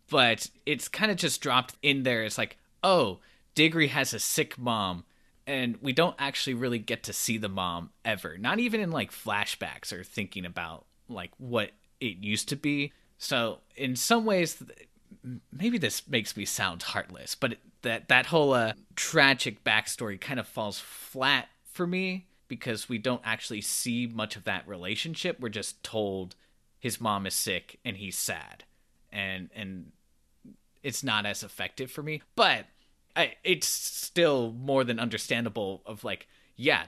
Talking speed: 165 wpm